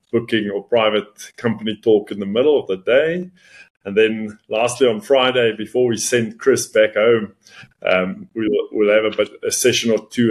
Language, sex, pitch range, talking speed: English, male, 110-155 Hz, 185 wpm